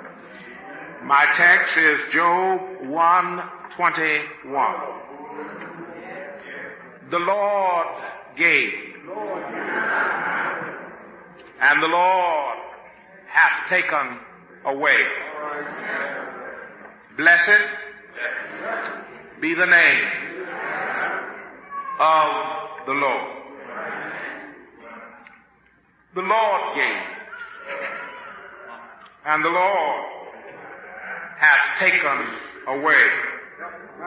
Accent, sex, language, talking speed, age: American, male, English, 55 wpm, 50-69